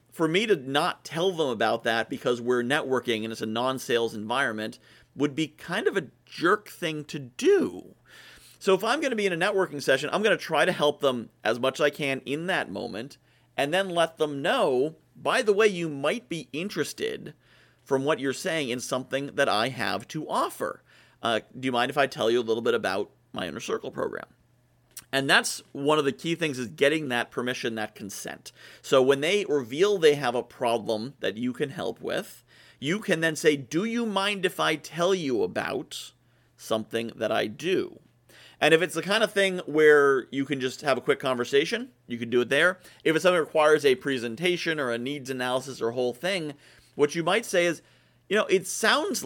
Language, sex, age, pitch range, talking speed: English, male, 40-59, 125-180 Hz, 210 wpm